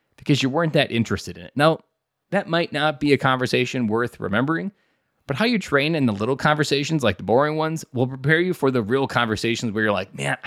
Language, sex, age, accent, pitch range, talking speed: English, male, 20-39, American, 105-145 Hz, 225 wpm